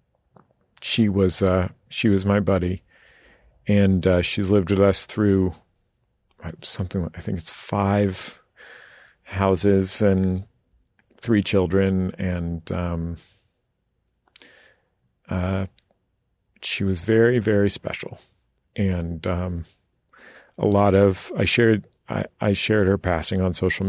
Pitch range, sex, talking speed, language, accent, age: 90-100 Hz, male, 115 wpm, English, American, 40-59